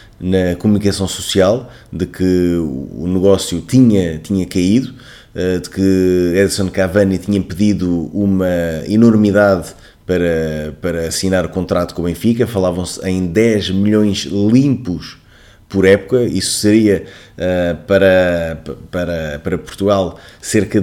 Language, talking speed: Portuguese, 110 wpm